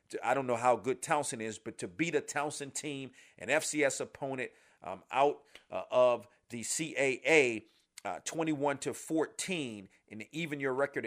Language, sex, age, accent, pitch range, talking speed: English, male, 40-59, American, 115-150 Hz, 150 wpm